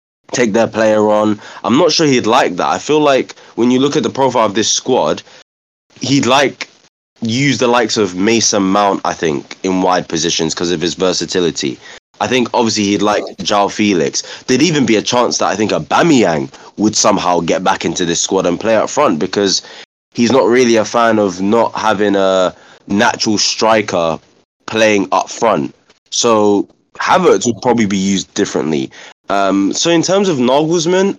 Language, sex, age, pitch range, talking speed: English, male, 20-39, 100-125 Hz, 185 wpm